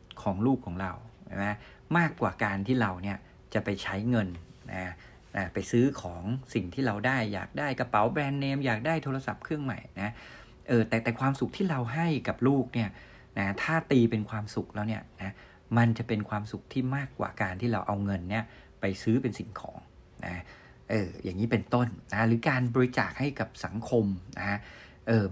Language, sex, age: Thai, male, 60-79